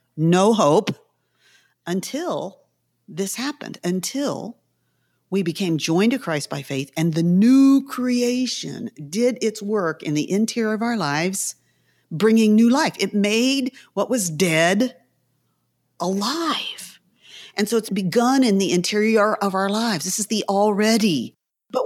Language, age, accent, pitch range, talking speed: English, 50-69, American, 165-230 Hz, 135 wpm